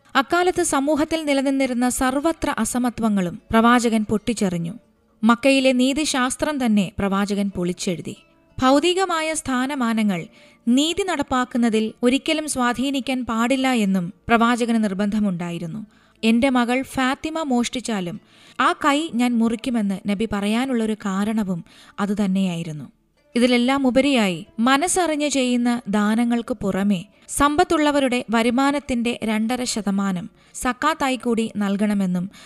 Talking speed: 85 wpm